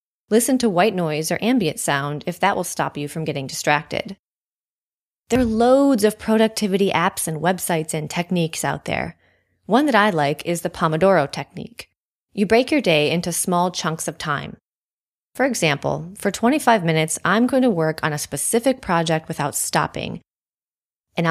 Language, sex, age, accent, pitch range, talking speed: English, female, 20-39, American, 160-220 Hz, 170 wpm